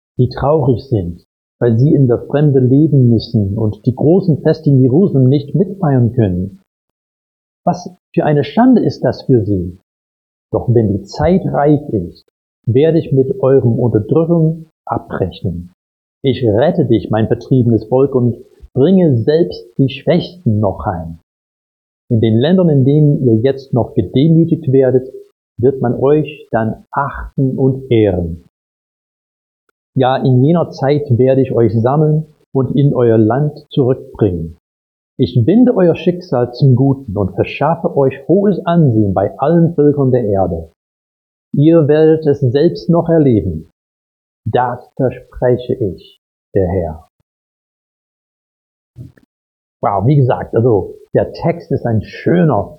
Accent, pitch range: German, 105-150 Hz